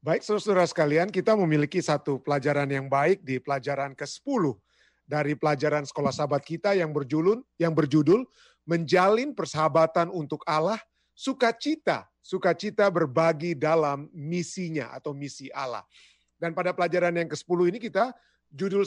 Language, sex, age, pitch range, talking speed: Indonesian, male, 30-49, 155-205 Hz, 130 wpm